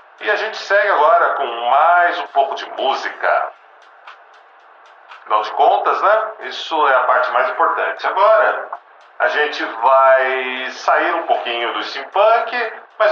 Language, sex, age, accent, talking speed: Portuguese, male, 40-59, Brazilian, 140 wpm